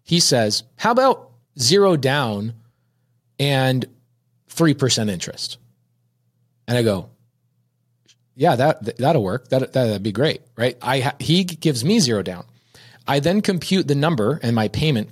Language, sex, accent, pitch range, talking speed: English, male, American, 115-155 Hz, 145 wpm